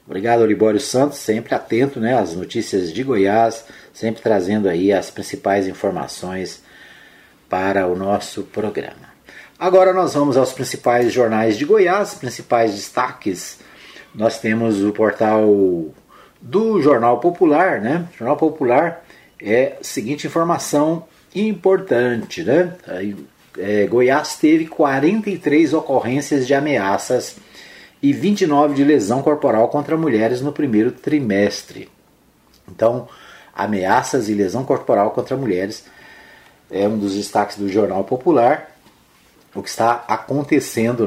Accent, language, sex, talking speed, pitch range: Brazilian, Portuguese, male, 120 wpm, 105-155 Hz